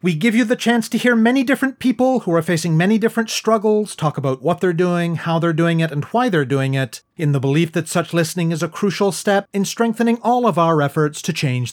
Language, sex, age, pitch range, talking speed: English, male, 30-49, 145-205 Hz, 245 wpm